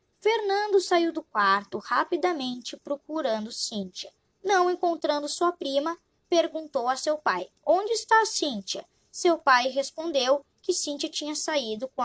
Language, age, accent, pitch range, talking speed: Portuguese, 20-39, Brazilian, 220-315 Hz, 130 wpm